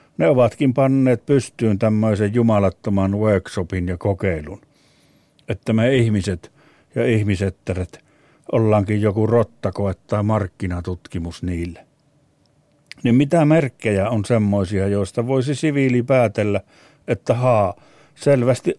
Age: 60-79